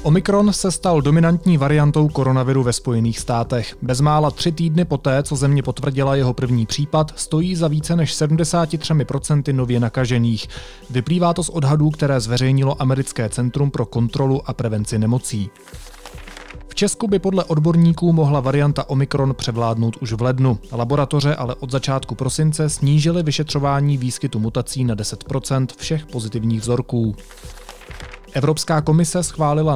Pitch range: 125-150 Hz